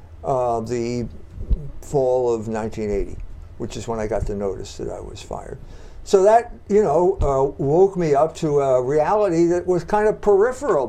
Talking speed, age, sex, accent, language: 175 wpm, 60-79, male, American, English